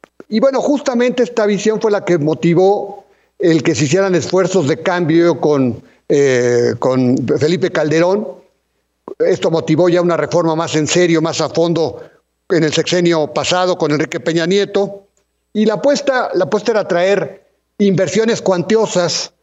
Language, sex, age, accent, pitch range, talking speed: Spanish, male, 50-69, Mexican, 155-185 Hz, 150 wpm